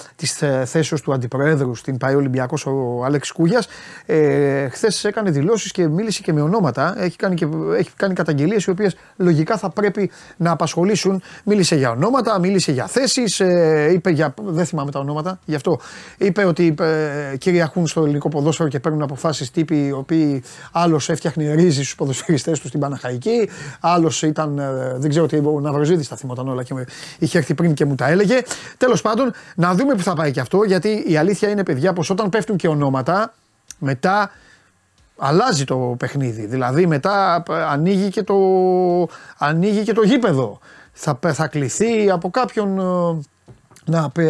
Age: 30-49